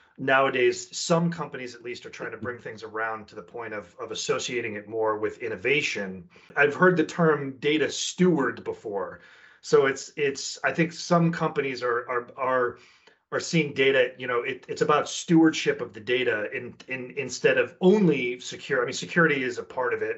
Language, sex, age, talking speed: English, male, 30-49, 190 wpm